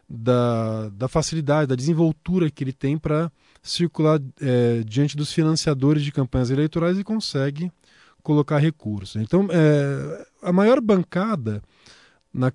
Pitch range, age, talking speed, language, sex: 120-155 Hz, 20-39, 130 wpm, Portuguese, male